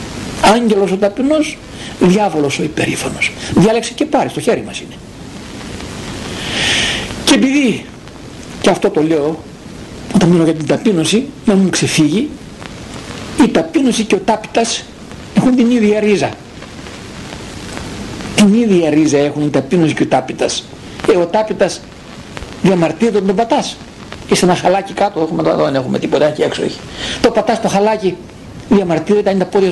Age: 60-79